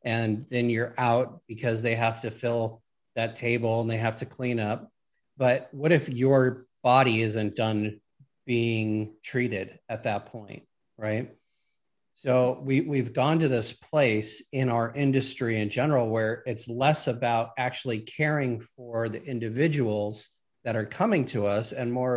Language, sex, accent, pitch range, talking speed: English, male, American, 115-140 Hz, 155 wpm